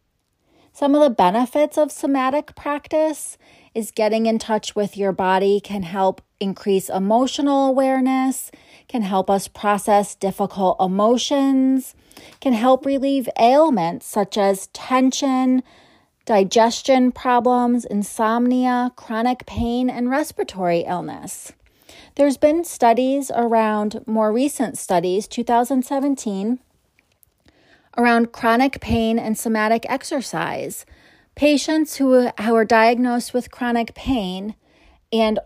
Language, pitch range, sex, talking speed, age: English, 210-265 Hz, female, 105 wpm, 30-49